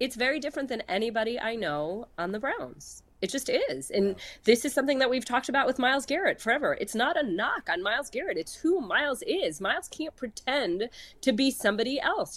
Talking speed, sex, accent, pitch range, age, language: 210 wpm, female, American, 215-290 Hz, 30-49, English